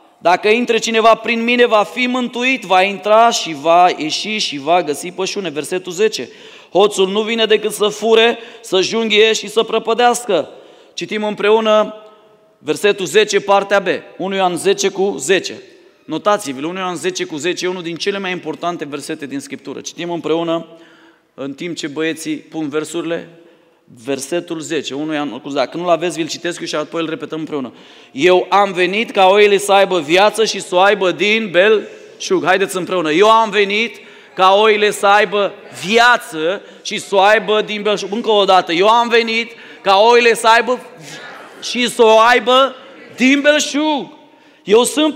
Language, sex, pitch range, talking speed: Romanian, male, 175-230 Hz, 170 wpm